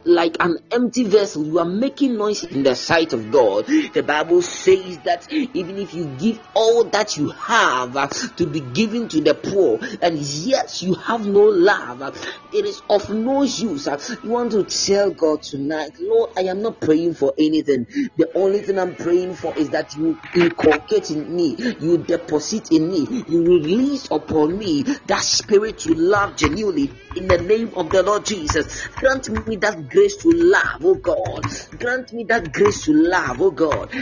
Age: 40-59